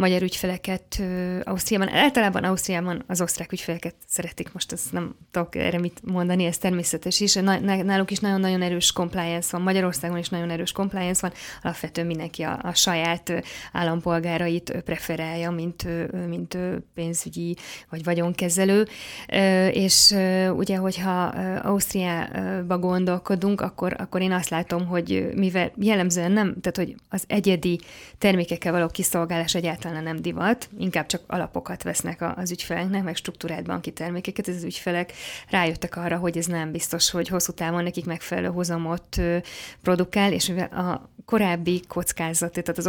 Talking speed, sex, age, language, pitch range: 140 wpm, female, 20-39, Hungarian, 170-185 Hz